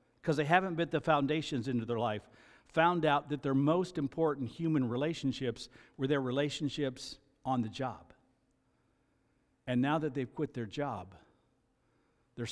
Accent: American